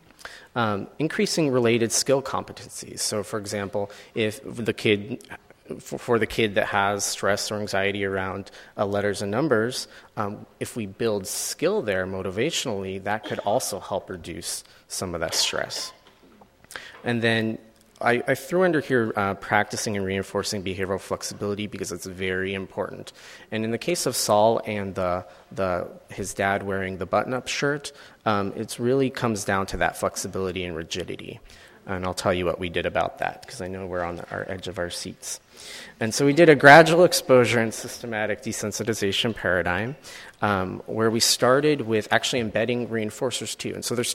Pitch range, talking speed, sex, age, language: 100-120 Hz, 170 wpm, male, 30-49, English